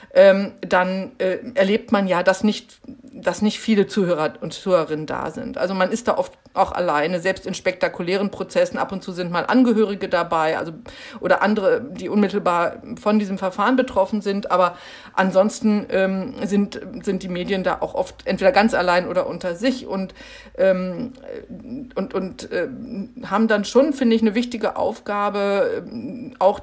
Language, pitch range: German, 185-240 Hz